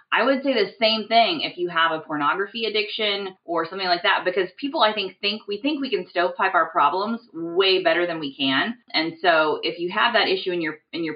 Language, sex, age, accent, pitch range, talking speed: English, female, 20-39, American, 145-210 Hz, 230 wpm